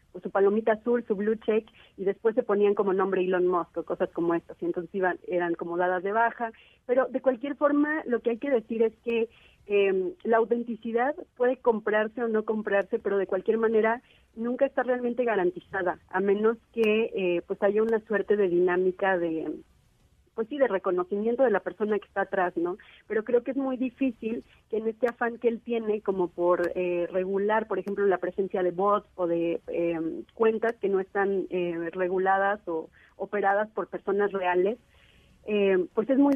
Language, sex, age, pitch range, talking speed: Spanish, female, 40-59, 180-225 Hz, 195 wpm